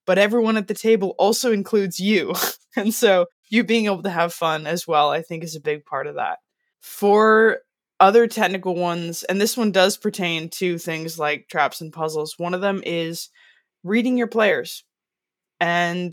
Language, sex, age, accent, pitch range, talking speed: English, female, 20-39, American, 160-195 Hz, 180 wpm